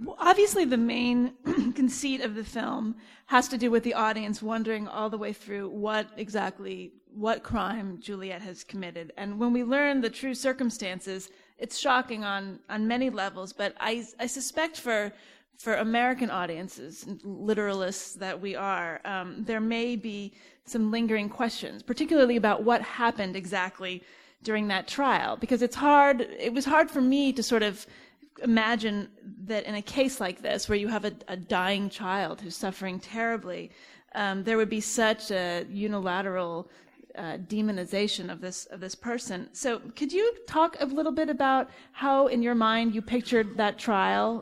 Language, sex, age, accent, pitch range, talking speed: English, female, 30-49, American, 200-250 Hz, 170 wpm